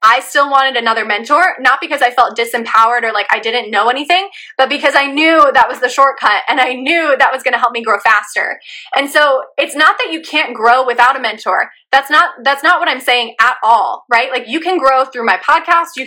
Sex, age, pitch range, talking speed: female, 20-39, 225-275 Hz, 240 wpm